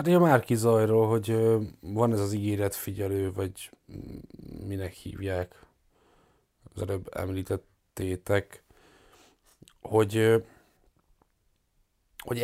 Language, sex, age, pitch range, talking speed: Hungarian, male, 30-49, 95-110 Hz, 75 wpm